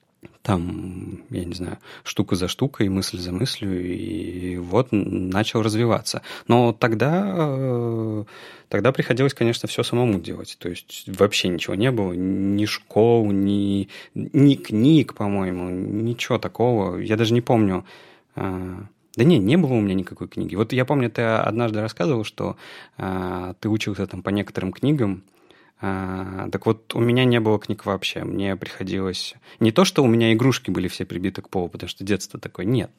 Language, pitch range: Russian, 95-125 Hz